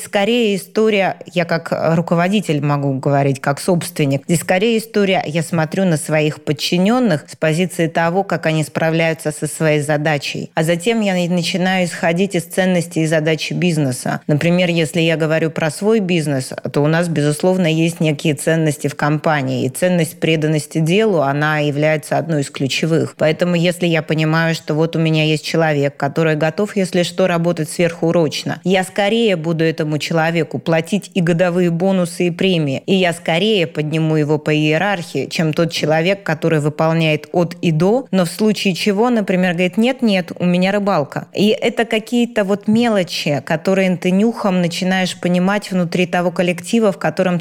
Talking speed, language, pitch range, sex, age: 165 wpm, Russian, 160-190 Hz, female, 20-39